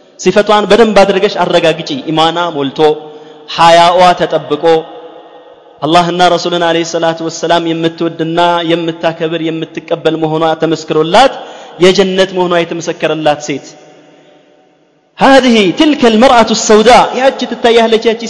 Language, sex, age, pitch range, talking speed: Amharic, male, 30-49, 155-190 Hz, 110 wpm